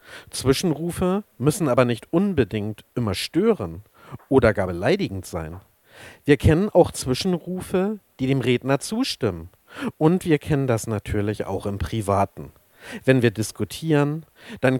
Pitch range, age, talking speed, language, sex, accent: 105-155 Hz, 50-69, 125 wpm, German, male, German